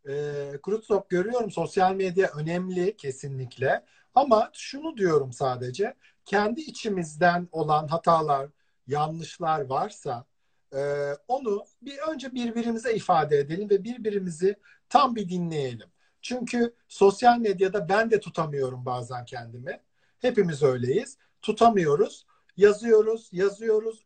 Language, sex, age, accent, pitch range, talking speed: Turkish, male, 50-69, native, 150-215 Hz, 100 wpm